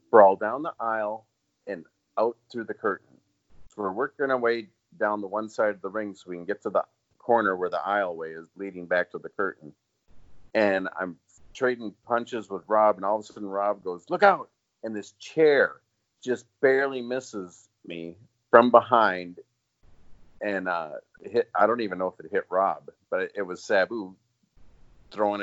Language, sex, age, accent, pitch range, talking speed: English, male, 40-59, American, 95-125 Hz, 180 wpm